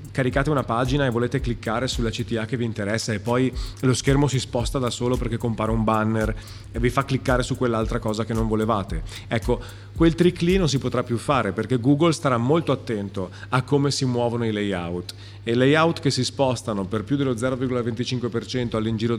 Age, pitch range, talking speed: 30-49, 105-130 Hz, 200 wpm